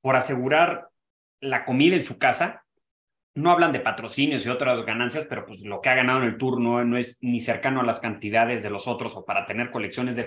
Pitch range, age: 115-155 Hz, 30-49